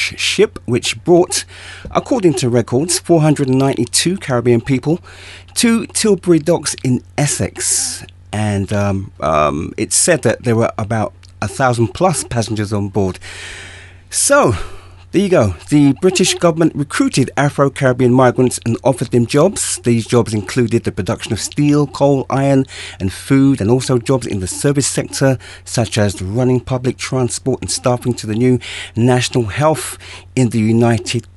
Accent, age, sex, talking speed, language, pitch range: British, 30-49, male, 145 wpm, English, 100-140 Hz